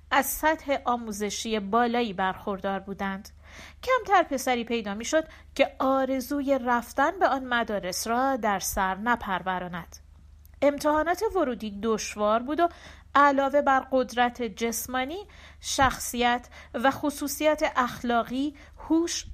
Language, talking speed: Persian, 105 wpm